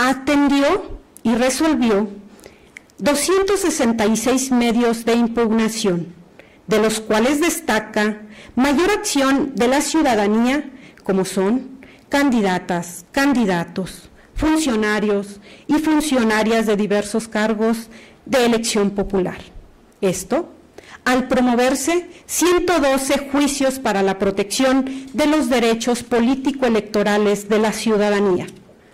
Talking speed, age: 90 wpm, 40-59